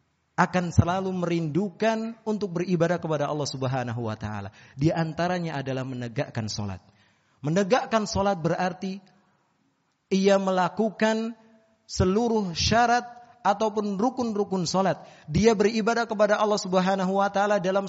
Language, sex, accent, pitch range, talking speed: Indonesian, male, native, 135-220 Hz, 110 wpm